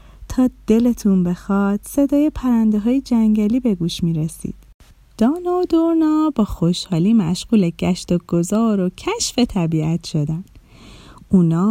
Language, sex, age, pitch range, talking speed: Persian, female, 30-49, 195-285 Hz, 130 wpm